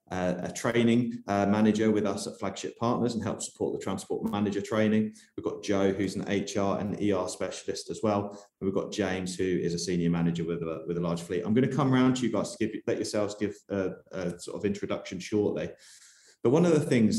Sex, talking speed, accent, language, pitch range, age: male, 225 wpm, British, English, 95-110 Hz, 20-39